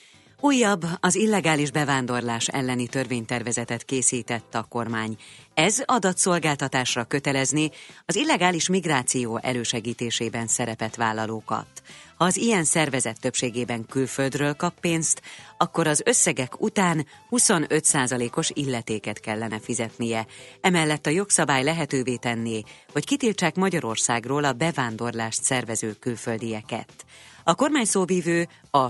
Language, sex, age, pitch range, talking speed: Hungarian, female, 30-49, 120-165 Hz, 100 wpm